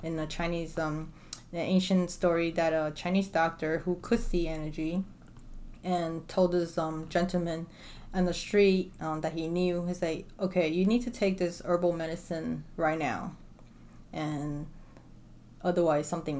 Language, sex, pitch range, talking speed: English, female, 160-180 Hz, 155 wpm